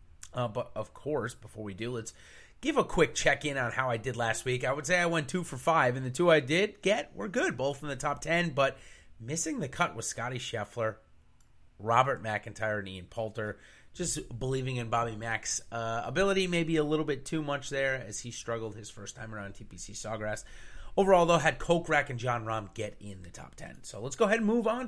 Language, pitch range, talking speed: English, 115-175 Hz, 225 wpm